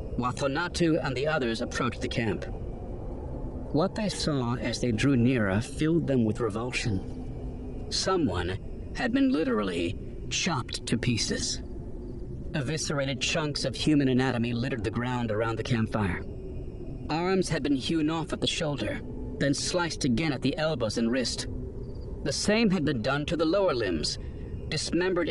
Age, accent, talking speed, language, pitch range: 40-59, American, 150 wpm, English, 115-155 Hz